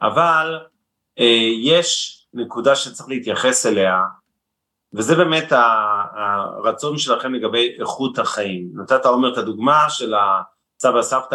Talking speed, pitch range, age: 110 wpm, 110-135 Hz, 30-49